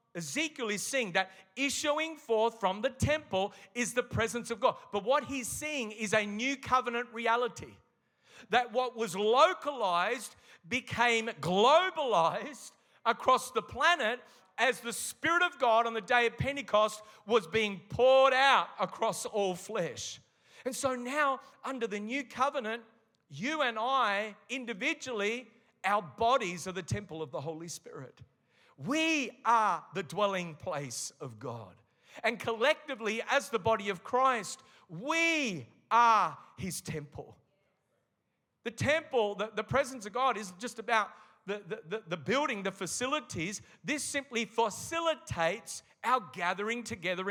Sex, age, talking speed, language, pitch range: male, 40-59, 140 wpm, English, 200-260 Hz